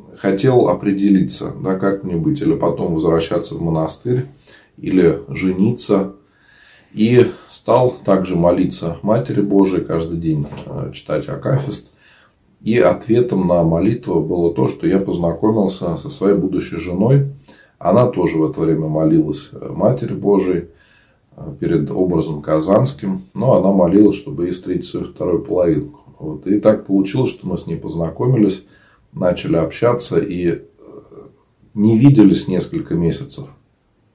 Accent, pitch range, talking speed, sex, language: native, 85-110 Hz, 120 wpm, male, Russian